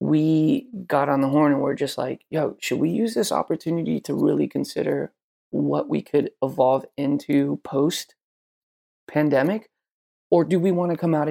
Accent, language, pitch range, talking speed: American, English, 135-150 Hz, 170 wpm